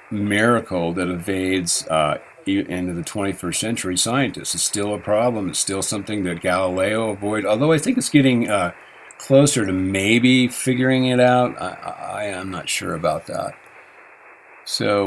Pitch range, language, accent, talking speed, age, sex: 95-120 Hz, English, American, 150 wpm, 50-69, male